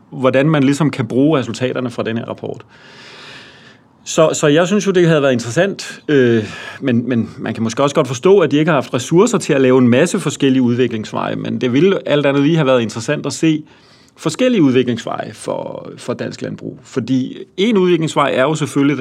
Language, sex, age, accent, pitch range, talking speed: Danish, male, 40-59, native, 120-150 Hz, 200 wpm